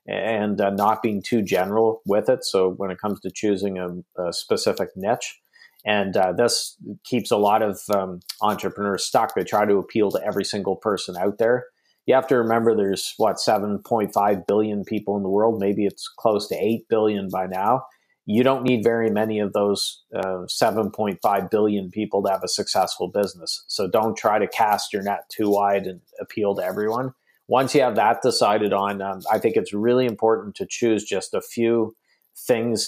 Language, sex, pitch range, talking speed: English, male, 100-115 Hz, 190 wpm